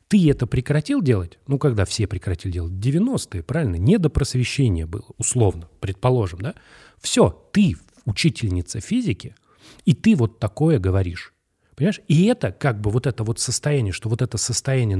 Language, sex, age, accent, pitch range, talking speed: Russian, male, 30-49, native, 110-160 Hz, 160 wpm